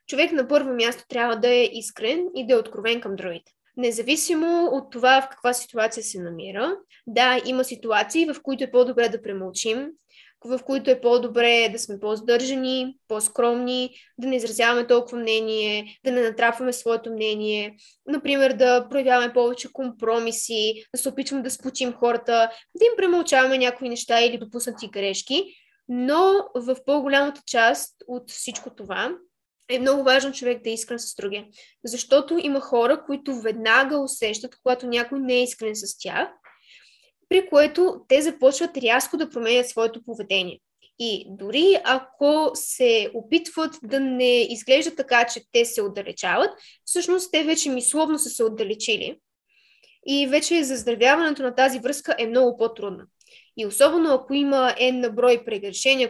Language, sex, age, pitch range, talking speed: Bulgarian, female, 20-39, 235-290 Hz, 150 wpm